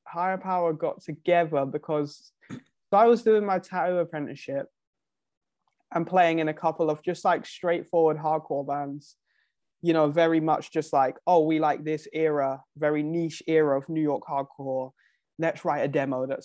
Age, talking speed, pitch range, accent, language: 20-39, 170 wpm, 140-170 Hz, British, English